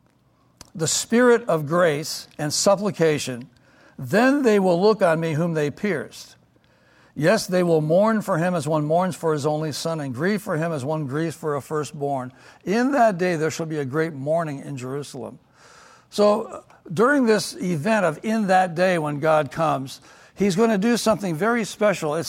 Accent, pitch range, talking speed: American, 150-205 Hz, 185 wpm